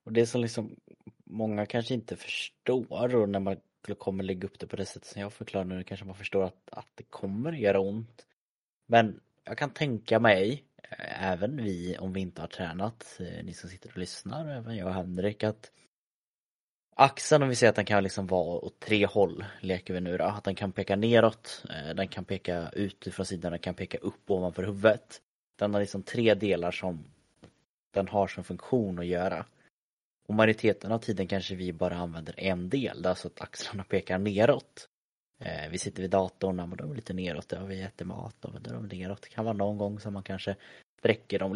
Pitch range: 90-105 Hz